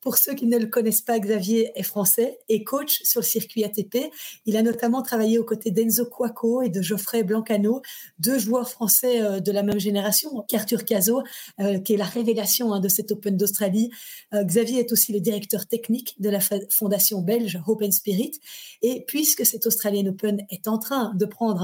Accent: French